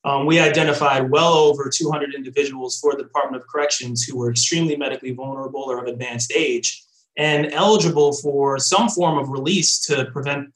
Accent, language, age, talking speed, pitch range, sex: American, English, 20-39, 170 wpm, 140-180 Hz, male